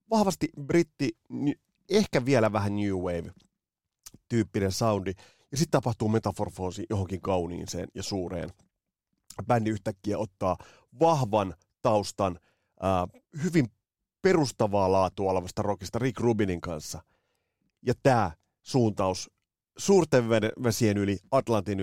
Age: 30-49